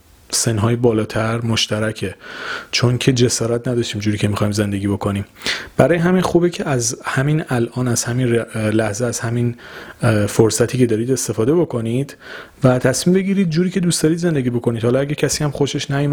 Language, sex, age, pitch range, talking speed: Persian, male, 30-49, 110-145 Hz, 165 wpm